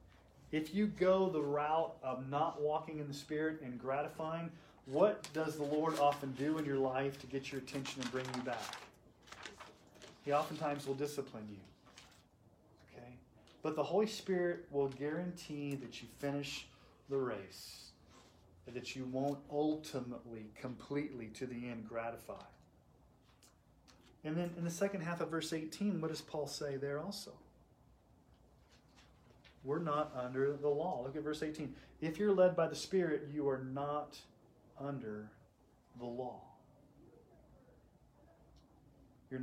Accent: American